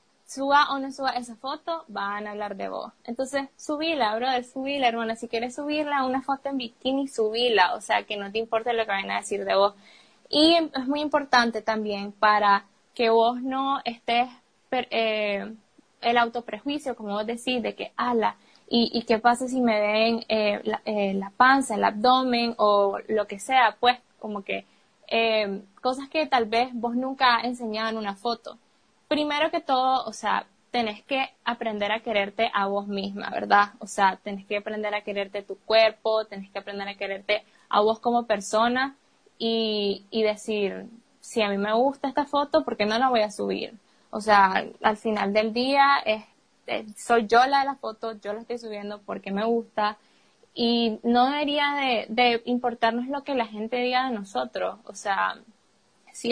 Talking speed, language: 185 wpm, Spanish